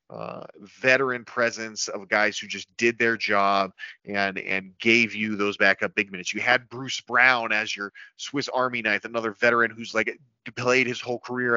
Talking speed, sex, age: 180 wpm, male, 30-49